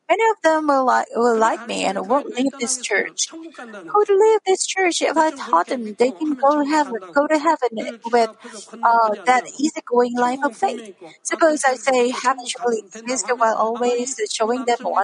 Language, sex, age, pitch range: Korean, female, 50-69, 235-310 Hz